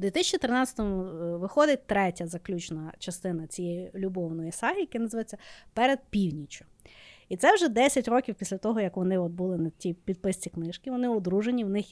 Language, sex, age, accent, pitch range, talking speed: Ukrainian, female, 20-39, native, 205-295 Hz, 160 wpm